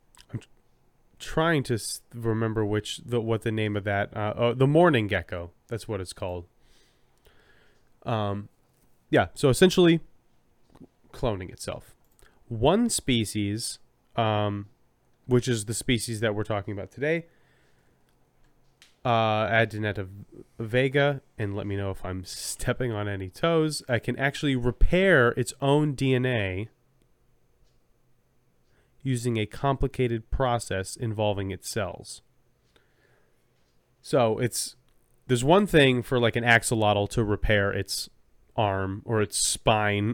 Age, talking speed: 20-39, 120 wpm